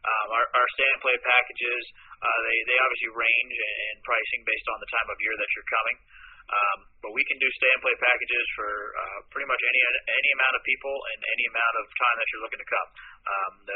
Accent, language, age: American, English, 30-49